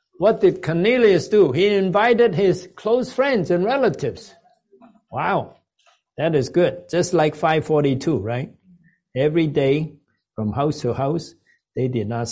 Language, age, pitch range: English, 60-79, 135-185 Hz